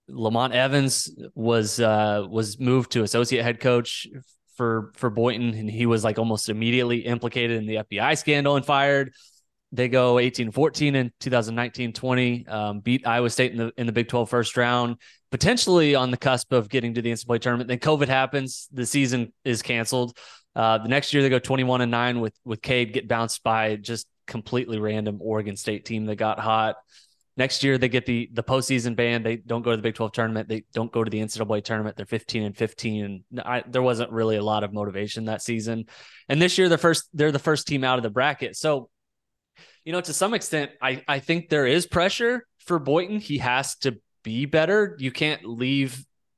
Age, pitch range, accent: 20-39, 110-130 Hz, American